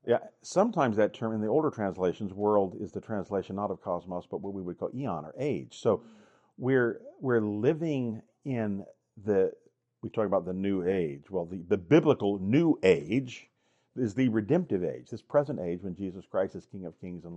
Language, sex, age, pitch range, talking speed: English, male, 50-69, 90-125 Hz, 195 wpm